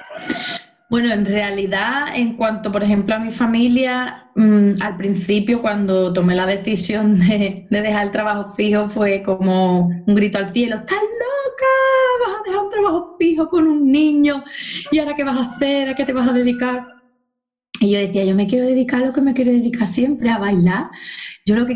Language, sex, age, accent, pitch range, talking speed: Spanish, female, 20-39, Spanish, 210-265 Hz, 195 wpm